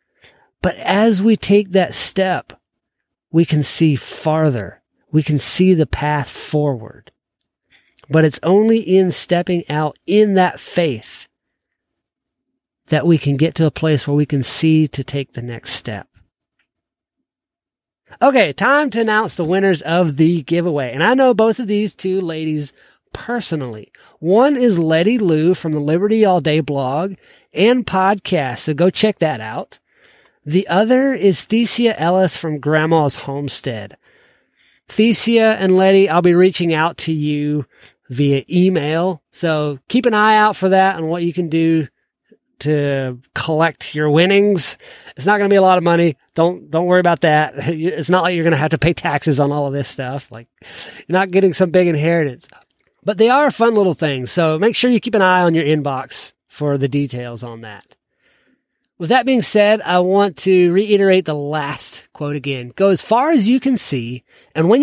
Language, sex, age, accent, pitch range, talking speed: English, male, 40-59, American, 150-195 Hz, 175 wpm